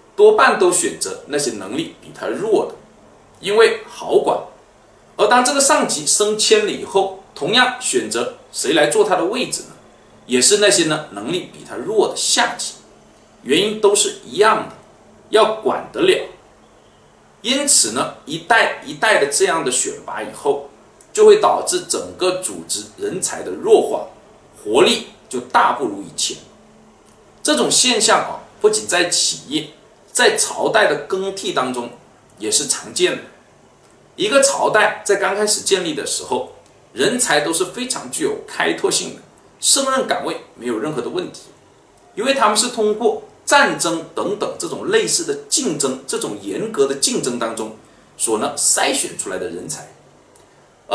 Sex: male